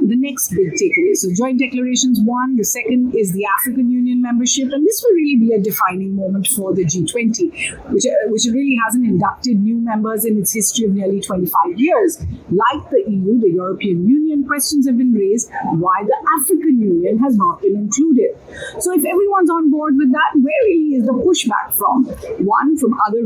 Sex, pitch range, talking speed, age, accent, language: female, 210-300 Hz, 195 wpm, 50-69, Indian, English